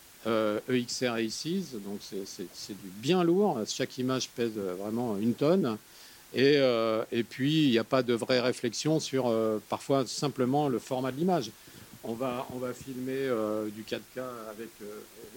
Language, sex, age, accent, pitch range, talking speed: French, male, 50-69, French, 115-140 Hz, 180 wpm